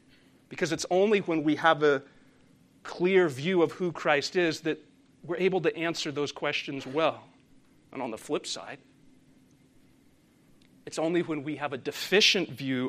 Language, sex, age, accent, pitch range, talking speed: English, male, 40-59, American, 145-185 Hz, 160 wpm